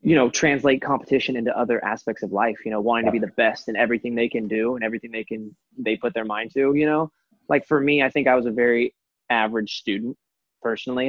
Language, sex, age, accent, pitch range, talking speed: English, male, 20-39, American, 115-145 Hz, 240 wpm